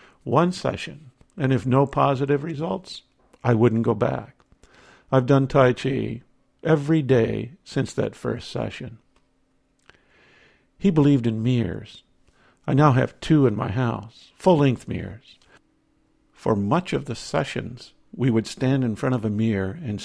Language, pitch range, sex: English, 115-135 Hz, male